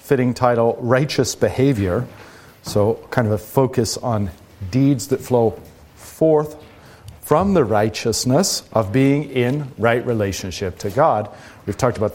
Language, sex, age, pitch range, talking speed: English, male, 40-59, 110-140 Hz, 135 wpm